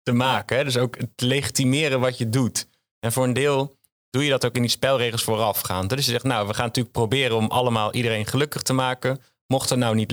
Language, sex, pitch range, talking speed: Dutch, male, 110-130 Hz, 235 wpm